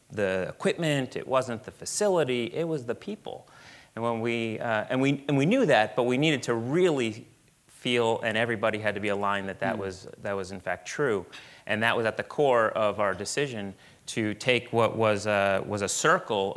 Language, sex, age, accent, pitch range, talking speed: English, male, 30-49, American, 95-115 Hz, 205 wpm